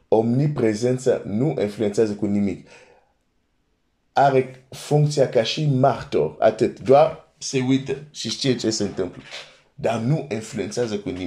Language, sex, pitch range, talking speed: Romanian, male, 100-130 Hz, 90 wpm